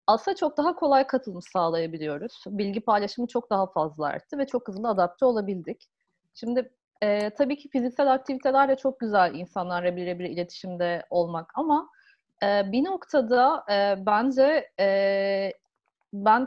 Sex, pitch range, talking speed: female, 190-265 Hz, 140 wpm